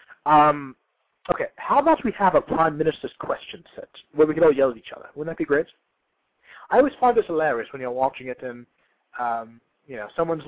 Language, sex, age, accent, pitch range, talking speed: English, male, 30-49, American, 130-195 Hz, 210 wpm